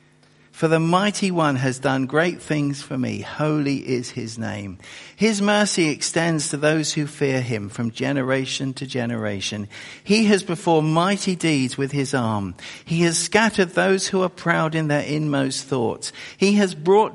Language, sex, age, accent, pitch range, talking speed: English, male, 50-69, British, 120-170 Hz, 170 wpm